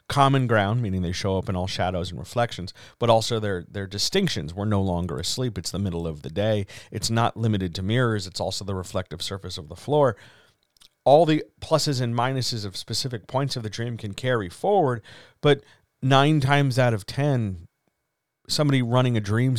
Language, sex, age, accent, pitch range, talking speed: English, male, 40-59, American, 105-140 Hz, 195 wpm